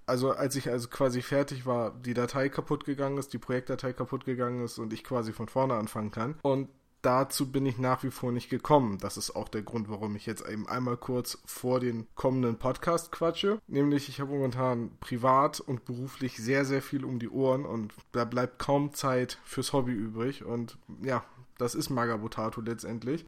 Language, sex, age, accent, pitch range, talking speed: German, male, 20-39, German, 120-150 Hz, 195 wpm